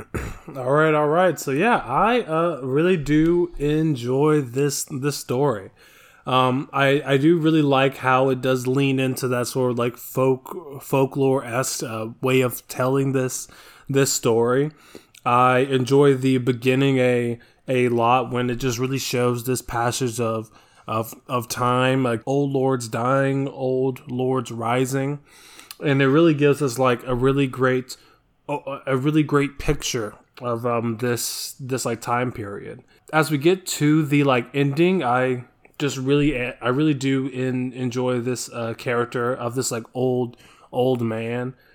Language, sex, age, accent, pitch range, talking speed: English, male, 20-39, American, 125-145 Hz, 155 wpm